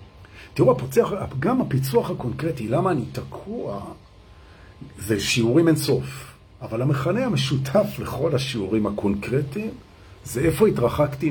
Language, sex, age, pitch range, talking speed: Hebrew, male, 50-69, 100-155 Hz, 110 wpm